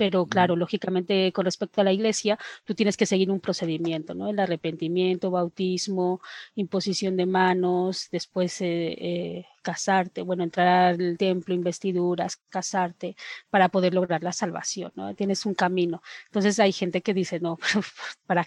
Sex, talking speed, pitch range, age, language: female, 155 wpm, 180-210 Hz, 30-49, Spanish